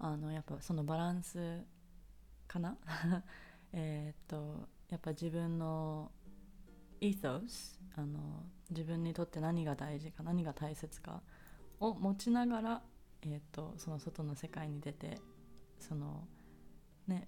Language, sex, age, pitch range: Japanese, female, 20-39, 150-175 Hz